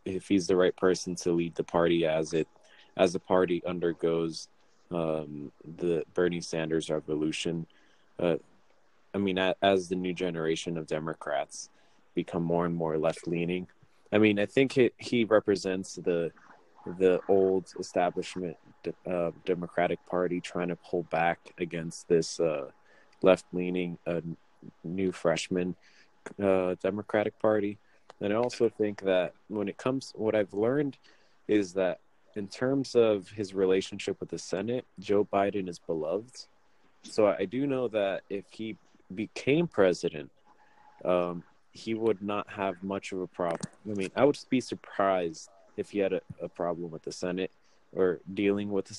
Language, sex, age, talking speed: English, male, 20-39, 155 wpm